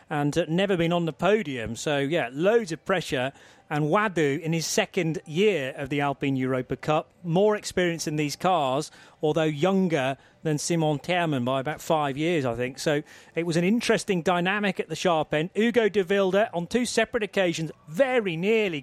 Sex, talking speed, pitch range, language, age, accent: male, 185 wpm, 145-190 Hz, English, 30-49, British